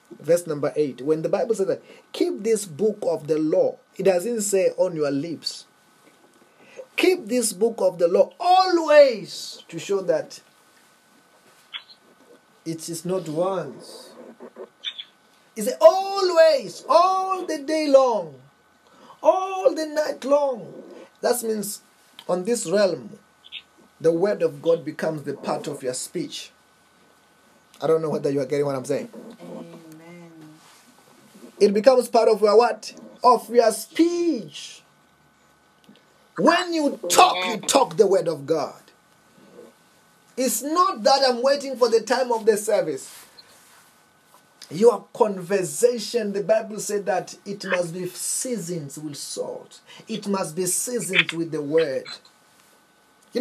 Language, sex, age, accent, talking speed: English, male, 30-49, South African, 135 wpm